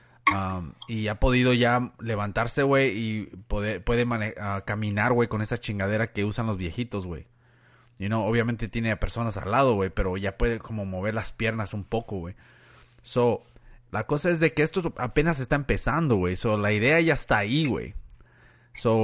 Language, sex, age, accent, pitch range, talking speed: Spanish, male, 30-49, Mexican, 105-125 Hz, 180 wpm